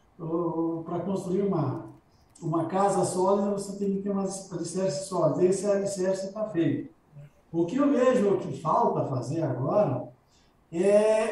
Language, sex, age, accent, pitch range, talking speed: Portuguese, male, 60-79, Brazilian, 160-205 Hz, 140 wpm